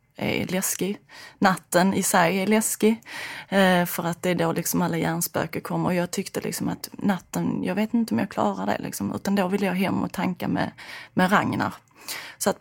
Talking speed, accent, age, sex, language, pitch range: 200 wpm, native, 30-49, female, Swedish, 175-200 Hz